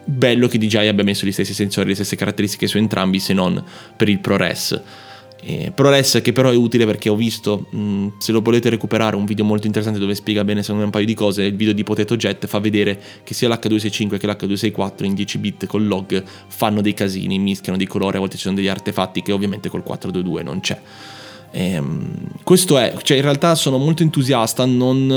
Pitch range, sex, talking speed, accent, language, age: 100-125 Hz, male, 215 wpm, native, Italian, 20-39